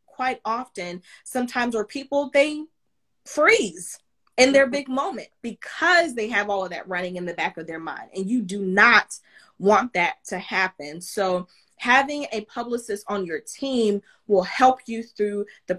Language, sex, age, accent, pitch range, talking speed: English, female, 20-39, American, 190-255 Hz, 165 wpm